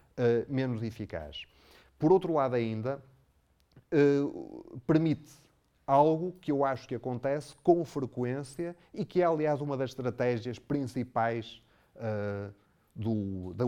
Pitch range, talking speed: 105-135 Hz, 105 wpm